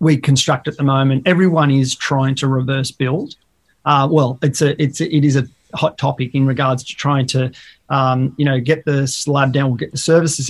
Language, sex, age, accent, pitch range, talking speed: English, male, 30-49, Australian, 130-150 Hz, 210 wpm